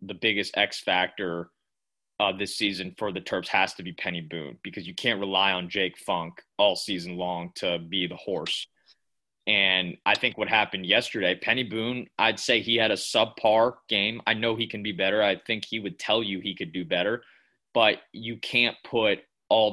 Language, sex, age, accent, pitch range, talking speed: English, male, 20-39, American, 90-110 Hz, 200 wpm